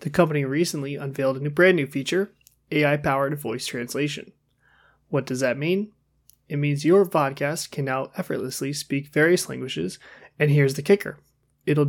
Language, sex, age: English, male, 20-39